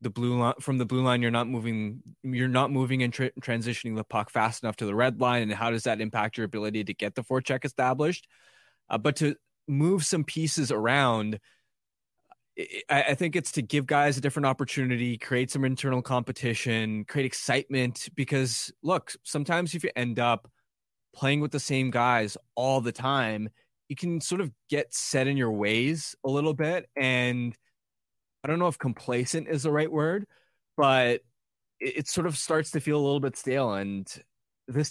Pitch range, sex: 120-145 Hz, male